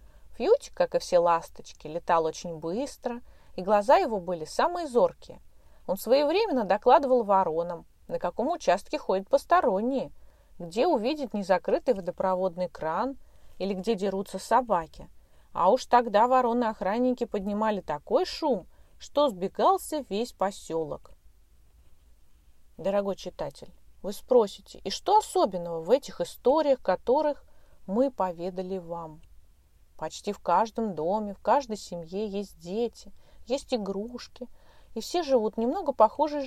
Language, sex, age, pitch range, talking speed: Russian, female, 30-49, 170-245 Hz, 120 wpm